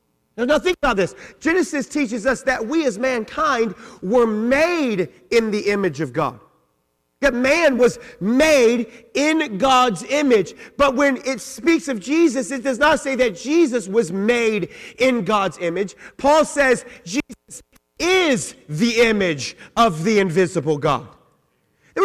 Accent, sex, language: American, male, English